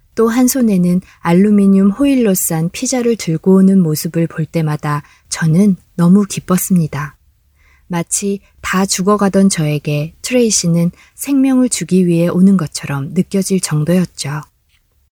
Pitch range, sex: 160-200 Hz, female